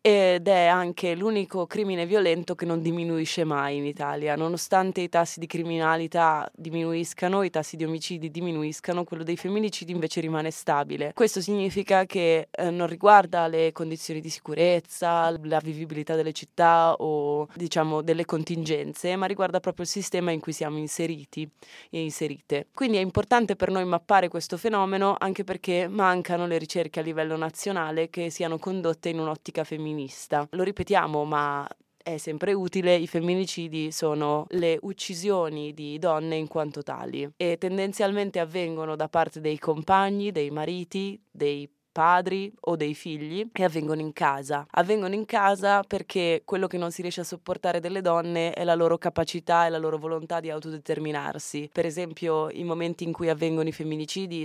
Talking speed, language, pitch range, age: 160 wpm, Italian, 160-185 Hz, 20-39